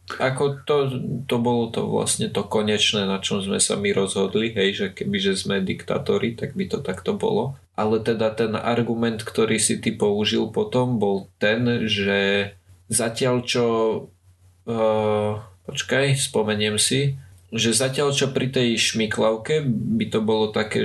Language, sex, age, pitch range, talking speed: Slovak, male, 20-39, 105-125 Hz, 155 wpm